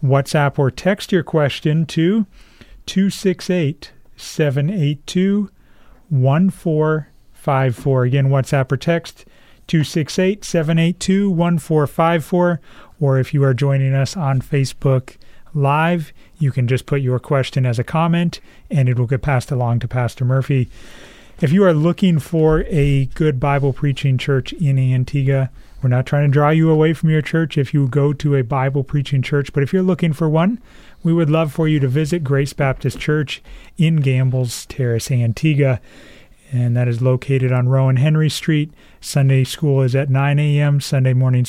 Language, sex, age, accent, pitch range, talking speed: English, male, 30-49, American, 130-155 Hz, 150 wpm